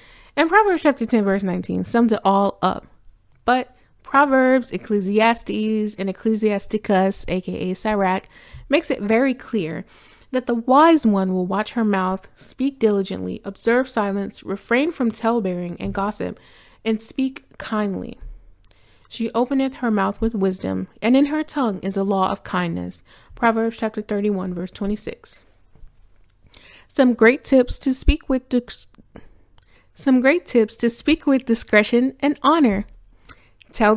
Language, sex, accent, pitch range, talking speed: English, female, American, 195-245 Hz, 140 wpm